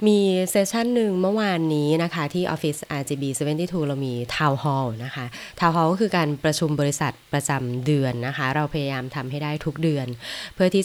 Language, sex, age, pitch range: Thai, female, 20-39, 140-175 Hz